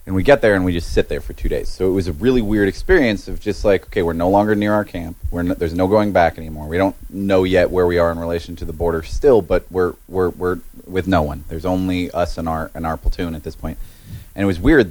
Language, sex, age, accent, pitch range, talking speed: English, male, 30-49, American, 75-95 Hz, 285 wpm